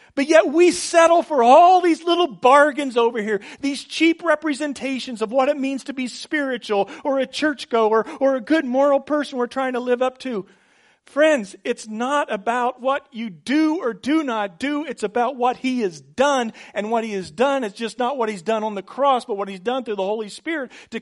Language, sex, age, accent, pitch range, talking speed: English, male, 40-59, American, 205-280 Hz, 215 wpm